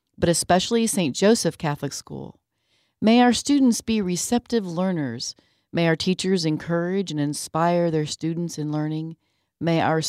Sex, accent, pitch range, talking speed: female, American, 145-195 Hz, 145 wpm